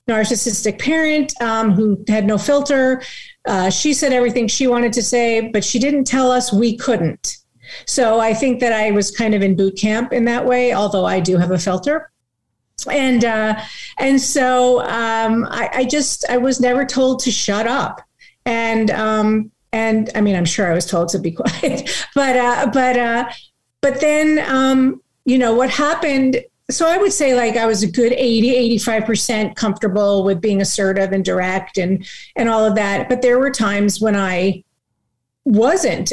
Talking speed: 185 wpm